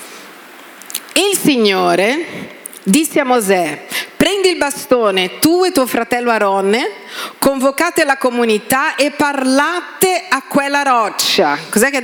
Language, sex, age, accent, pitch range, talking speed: Italian, female, 40-59, native, 220-310 Hz, 125 wpm